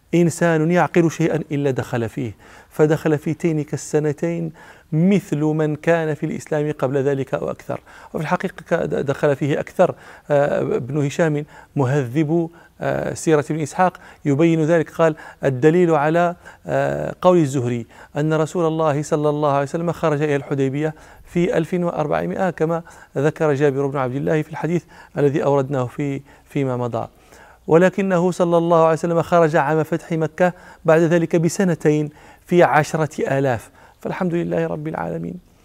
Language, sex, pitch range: Arabic, male, 135-160 Hz